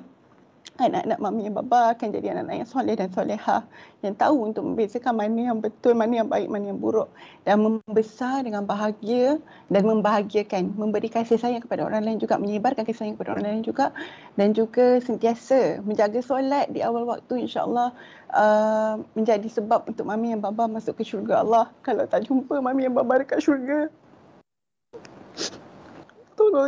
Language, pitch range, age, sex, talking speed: Malay, 220-265 Hz, 30-49, female, 165 wpm